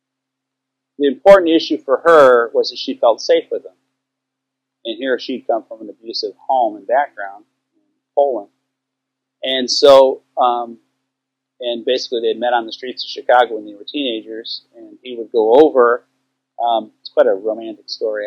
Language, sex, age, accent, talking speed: English, male, 40-59, American, 170 wpm